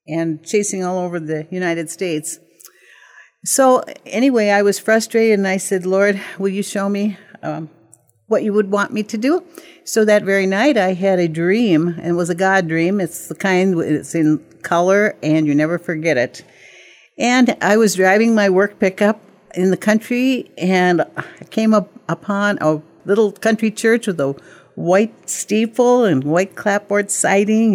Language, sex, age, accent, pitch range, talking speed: English, female, 60-79, American, 170-220 Hz, 170 wpm